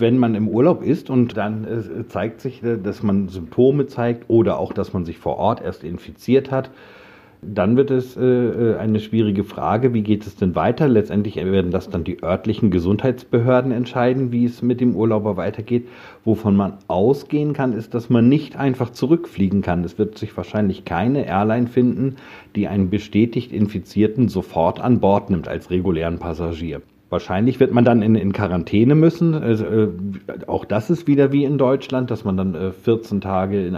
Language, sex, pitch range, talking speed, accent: German, male, 100-125 Hz, 180 wpm, German